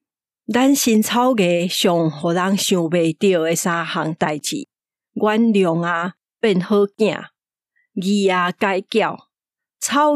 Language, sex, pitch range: Chinese, female, 180-220 Hz